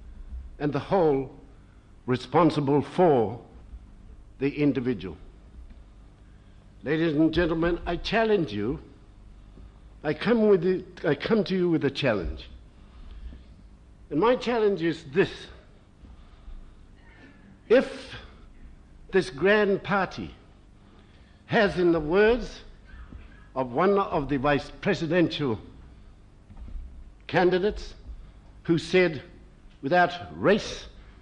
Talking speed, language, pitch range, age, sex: 90 wpm, English, 95-160 Hz, 60-79, male